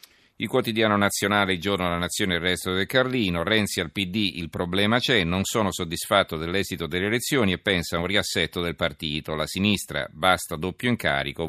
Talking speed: 190 wpm